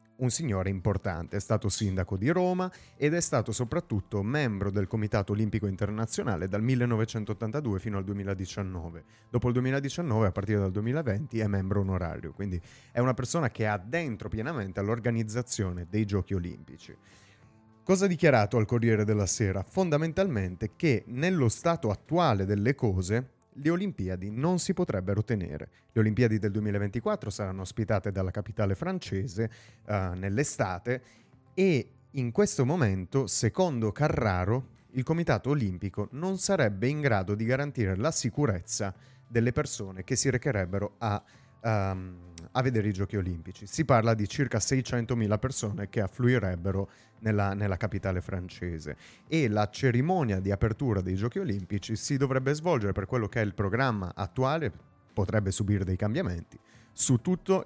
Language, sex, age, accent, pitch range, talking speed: Italian, male, 30-49, native, 100-130 Hz, 145 wpm